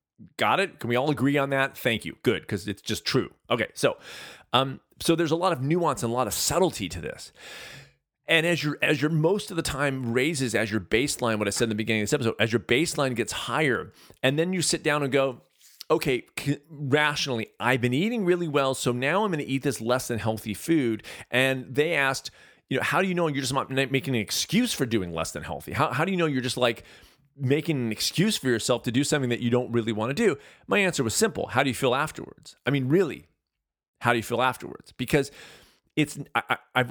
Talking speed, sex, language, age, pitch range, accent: 235 wpm, male, English, 30-49, 115-150 Hz, American